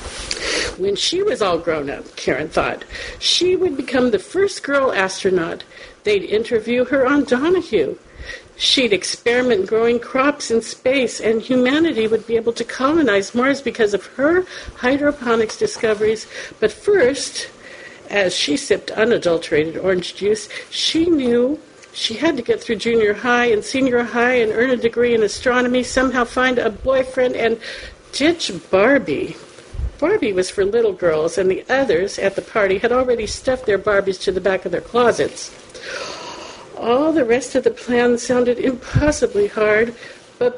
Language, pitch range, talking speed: English, 215-325 Hz, 155 wpm